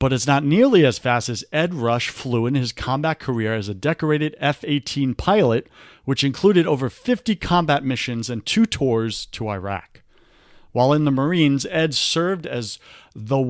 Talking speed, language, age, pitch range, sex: 170 wpm, English, 40-59, 115-150 Hz, male